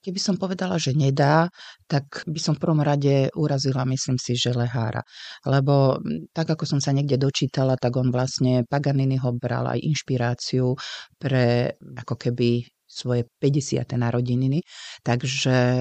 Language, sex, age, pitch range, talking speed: Slovak, female, 40-59, 130-155 Hz, 145 wpm